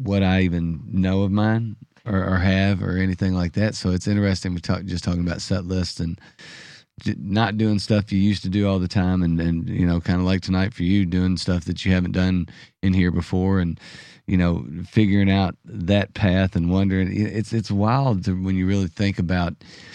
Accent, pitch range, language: American, 90-105 Hz, English